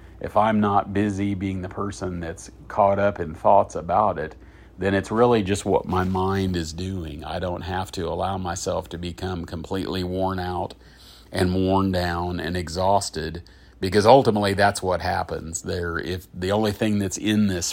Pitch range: 90-100 Hz